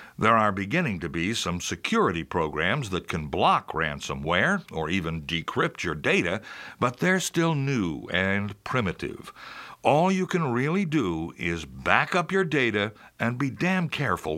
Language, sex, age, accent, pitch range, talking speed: English, male, 60-79, American, 90-150 Hz, 155 wpm